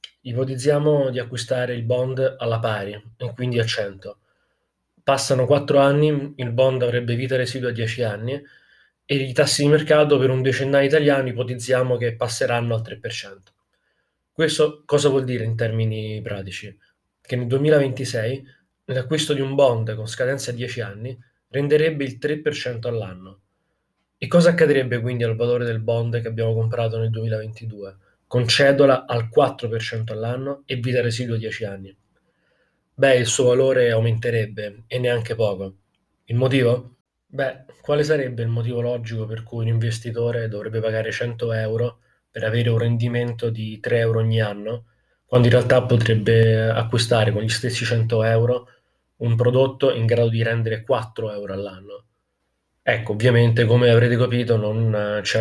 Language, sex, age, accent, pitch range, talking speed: Italian, male, 20-39, native, 115-130 Hz, 155 wpm